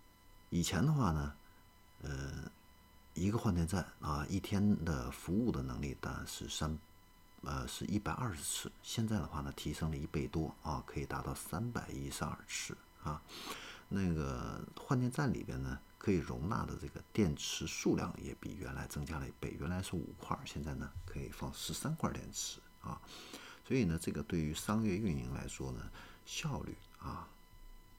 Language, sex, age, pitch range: Chinese, male, 50-69, 75-105 Hz